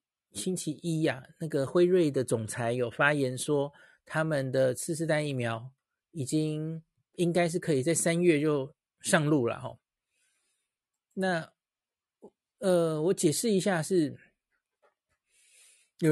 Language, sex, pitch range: Chinese, male, 135-175 Hz